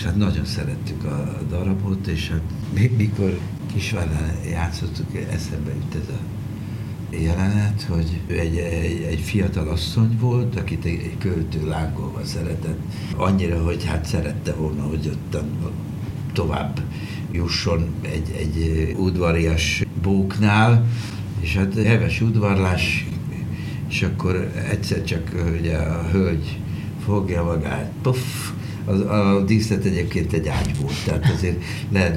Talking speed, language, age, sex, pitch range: 125 wpm, Hungarian, 60-79, male, 85-110 Hz